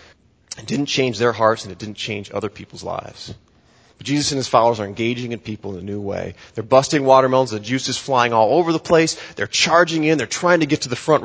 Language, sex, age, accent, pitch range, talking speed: English, male, 30-49, American, 120-160 Hz, 240 wpm